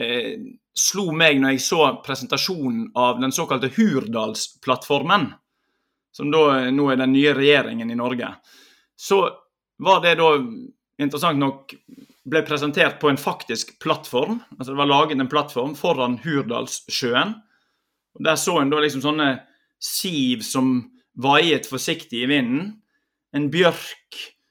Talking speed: 135 wpm